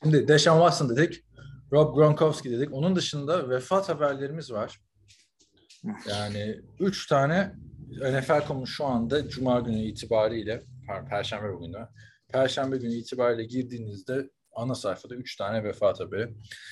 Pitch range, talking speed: 110-140 Hz, 125 wpm